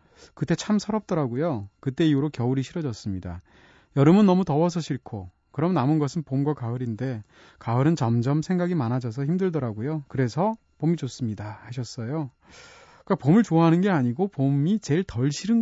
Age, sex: 30-49, male